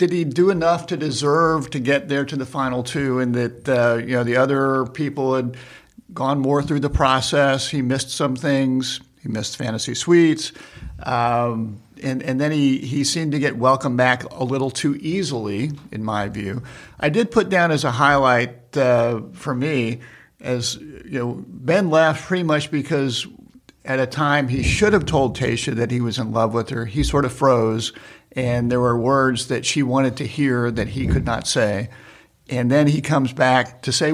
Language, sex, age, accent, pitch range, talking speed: English, male, 50-69, American, 125-155 Hz, 195 wpm